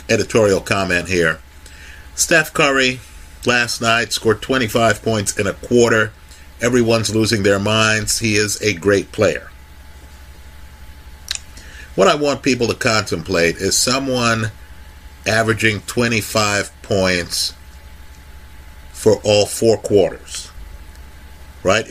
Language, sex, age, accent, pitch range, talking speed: English, male, 50-69, American, 70-120 Hz, 105 wpm